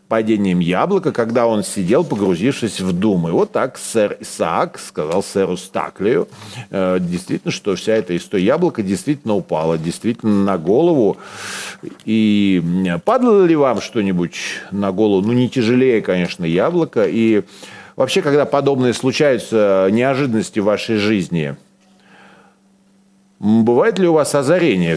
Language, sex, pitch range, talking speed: Russian, male, 95-130 Hz, 125 wpm